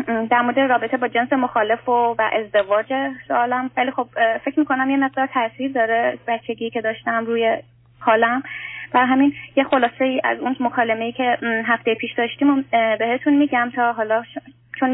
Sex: female